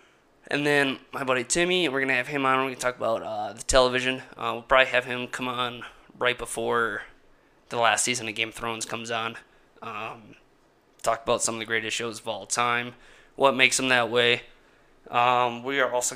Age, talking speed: 20-39, 210 wpm